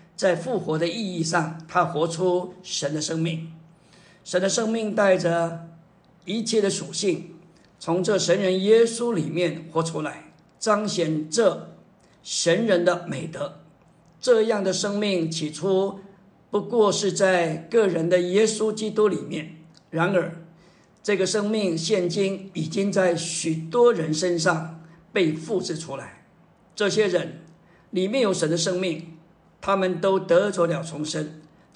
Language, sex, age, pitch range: Chinese, male, 50-69, 165-195 Hz